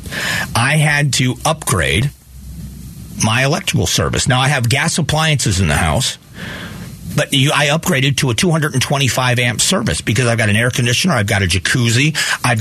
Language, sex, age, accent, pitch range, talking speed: English, male, 40-59, American, 115-150 Hz, 155 wpm